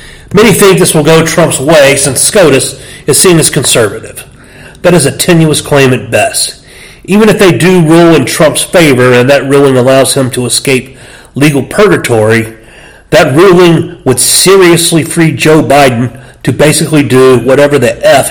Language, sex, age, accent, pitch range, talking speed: English, male, 40-59, American, 125-170 Hz, 165 wpm